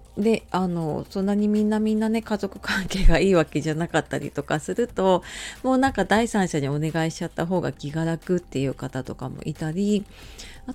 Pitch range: 160-220 Hz